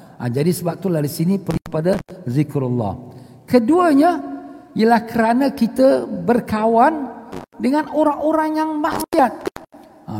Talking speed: 120 wpm